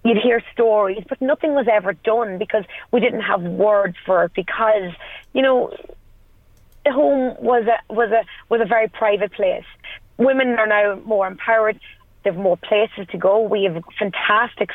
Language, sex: English, female